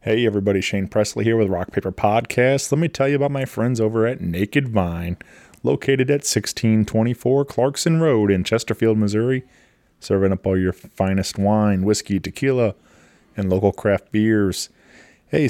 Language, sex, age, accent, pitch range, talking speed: English, male, 20-39, American, 105-140 Hz, 160 wpm